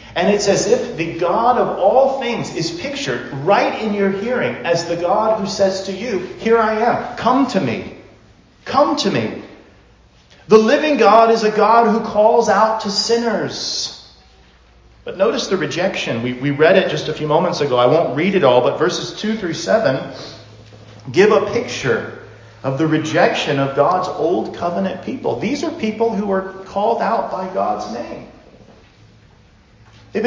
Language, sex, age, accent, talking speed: English, male, 40-59, American, 175 wpm